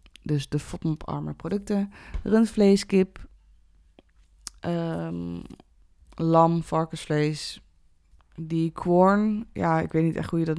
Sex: female